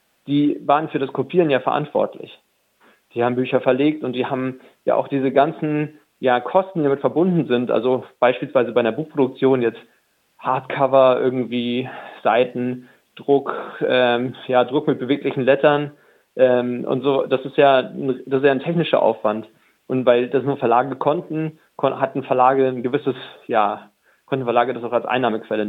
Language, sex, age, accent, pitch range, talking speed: German, male, 40-59, German, 120-140 Hz, 160 wpm